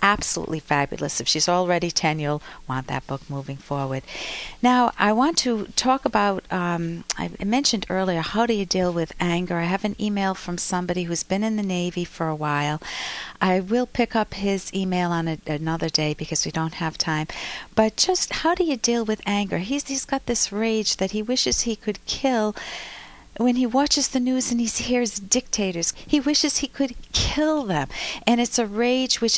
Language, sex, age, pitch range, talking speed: English, female, 50-69, 180-240 Hz, 195 wpm